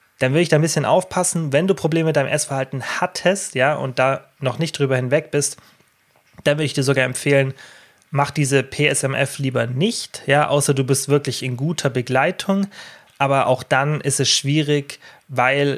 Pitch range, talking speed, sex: 125-150 Hz, 185 wpm, male